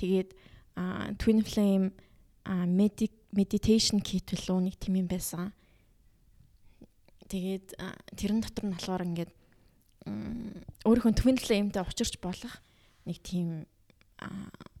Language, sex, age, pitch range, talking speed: English, female, 20-39, 185-210 Hz, 90 wpm